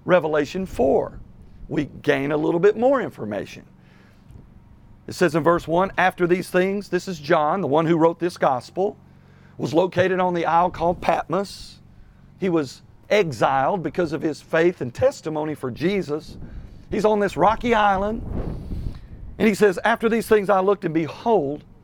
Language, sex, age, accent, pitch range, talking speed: English, male, 50-69, American, 150-200 Hz, 160 wpm